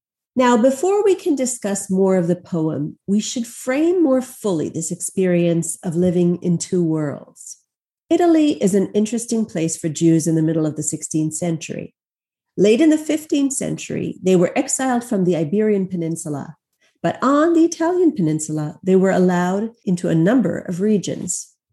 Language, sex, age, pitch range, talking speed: English, female, 40-59, 175-245 Hz, 165 wpm